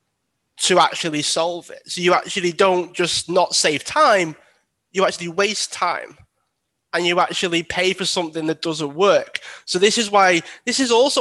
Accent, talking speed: British, 170 wpm